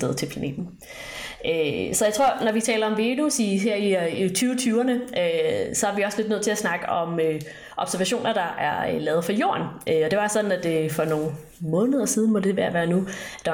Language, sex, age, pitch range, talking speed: Danish, female, 30-49, 170-240 Hz, 215 wpm